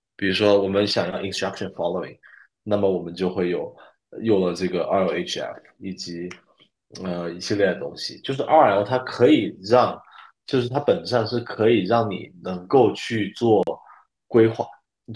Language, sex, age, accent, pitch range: Chinese, male, 20-39, native, 95-115 Hz